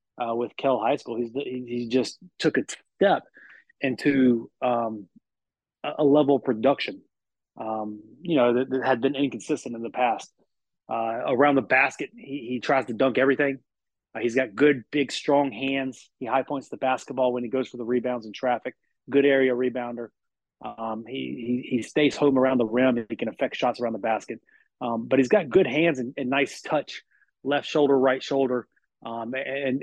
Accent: American